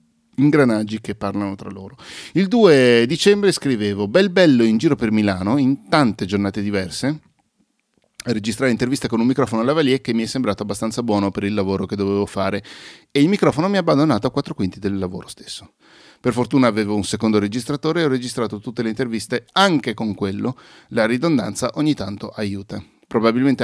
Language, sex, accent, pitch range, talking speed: English, male, Italian, 100-125 Hz, 185 wpm